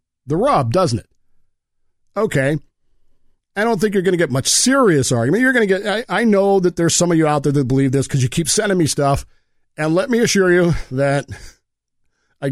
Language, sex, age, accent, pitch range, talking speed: English, male, 40-59, American, 135-175 Hz, 215 wpm